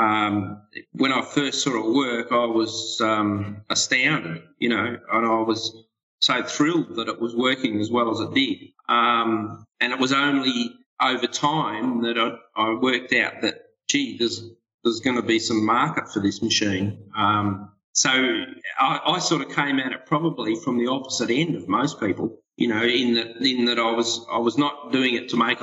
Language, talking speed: English, 195 wpm